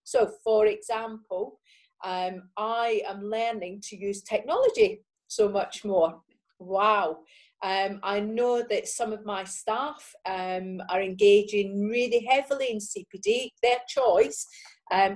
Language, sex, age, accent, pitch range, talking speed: English, female, 40-59, British, 185-245 Hz, 125 wpm